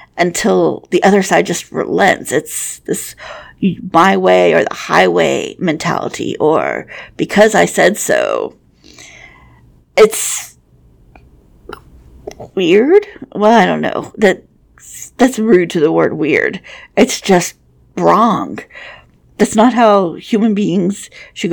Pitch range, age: 170-255 Hz, 50-69